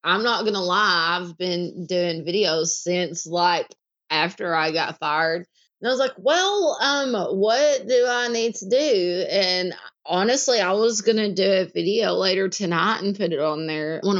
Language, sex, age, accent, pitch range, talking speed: English, female, 20-39, American, 175-215 Hz, 185 wpm